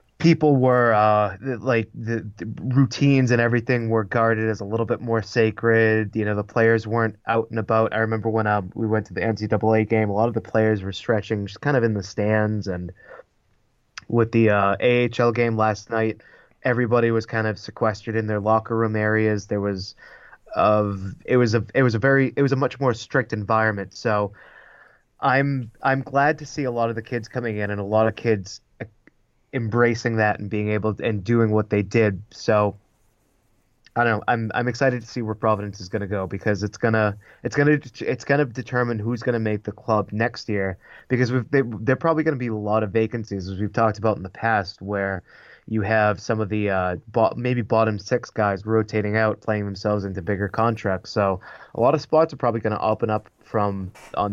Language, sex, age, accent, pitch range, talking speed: English, male, 20-39, American, 105-120 Hz, 215 wpm